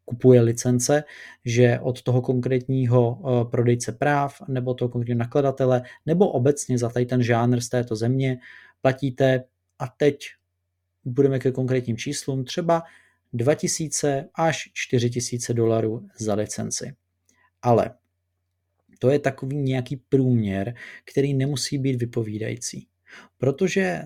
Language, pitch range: Czech, 120-135 Hz